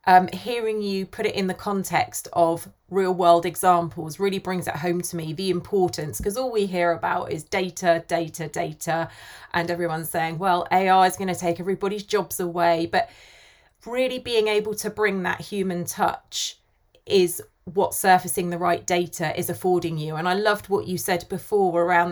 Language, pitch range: English, 170-200 Hz